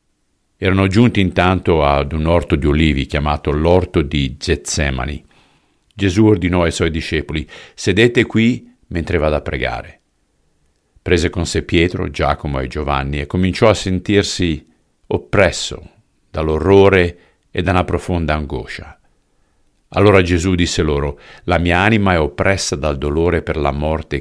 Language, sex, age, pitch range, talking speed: Italian, male, 50-69, 75-95 Hz, 135 wpm